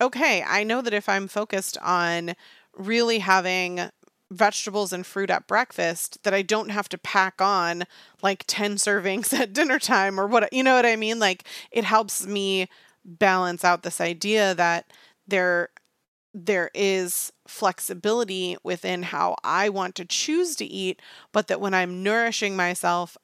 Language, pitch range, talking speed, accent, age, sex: English, 180-215 Hz, 160 wpm, American, 30-49, female